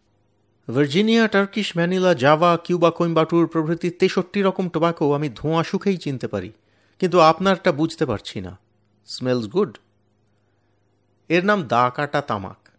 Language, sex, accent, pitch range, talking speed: Bengali, male, native, 105-175 Hz, 120 wpm